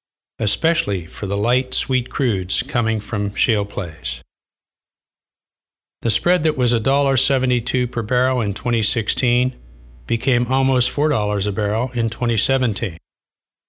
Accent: American